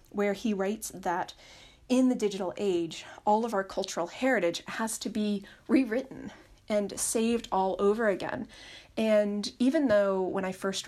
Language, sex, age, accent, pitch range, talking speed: English, female, 30-49, American, 195-255 Hz, 155 wpm